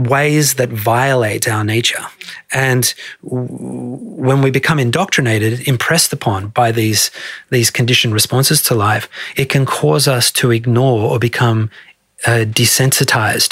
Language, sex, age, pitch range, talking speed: English, male, 30-49, 115-135 Hz, 135 wpm